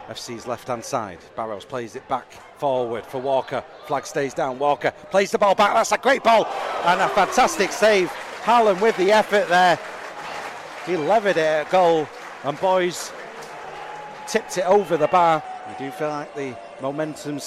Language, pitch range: English, 155-225 Hz